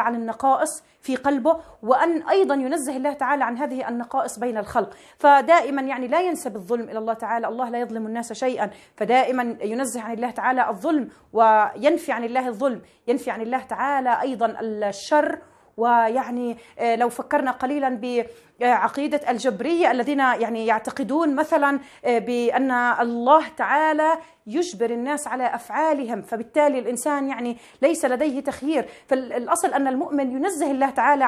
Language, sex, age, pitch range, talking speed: Arabic, female, 30-49, 235-290 Hz, 140 wpm